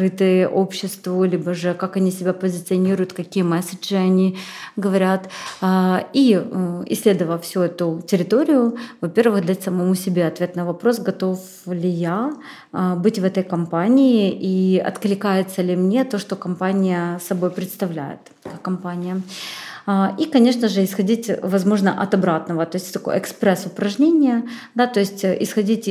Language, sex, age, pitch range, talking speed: Russian, female, 30-49, 180-210 Hz, 130 wpm